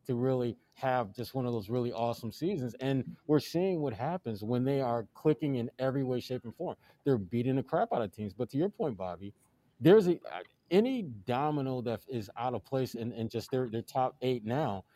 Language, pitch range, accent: English, 115-135 Hz, American